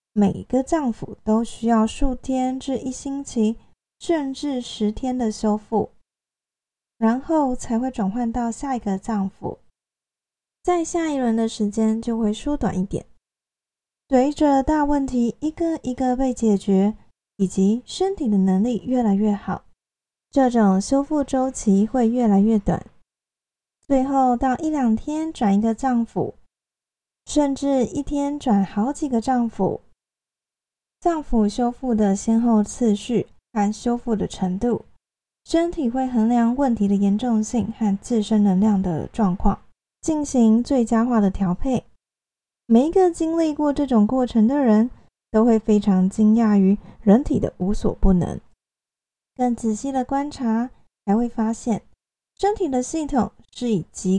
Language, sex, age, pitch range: Chinese, female, 20-39, 210-265 Hz